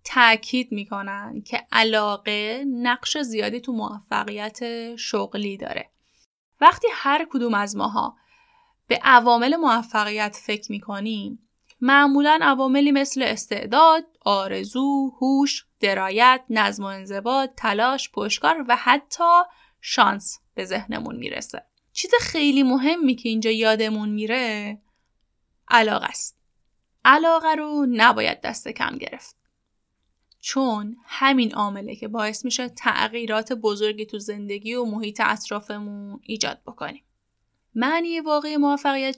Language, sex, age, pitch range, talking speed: Persian, female, 10-29, 215-275 Hz, 105 wpm